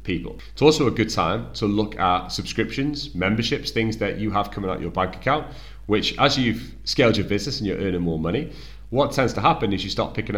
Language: English